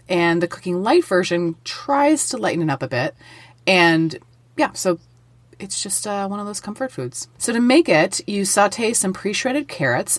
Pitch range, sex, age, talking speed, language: 145-195 Hz, female, 30-49, 195 wpm, English